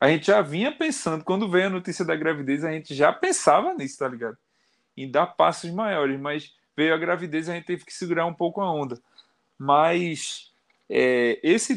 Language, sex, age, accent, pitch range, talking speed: Portuguese, male, 20-39, Brazilian, 140-190 Hz, 195 wpm